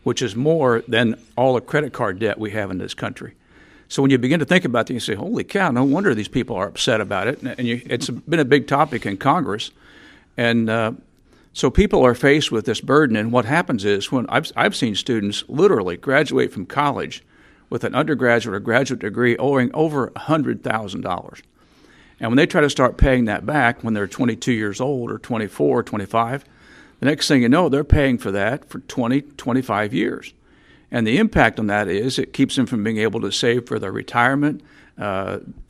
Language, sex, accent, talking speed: English, male, American, 205 wpm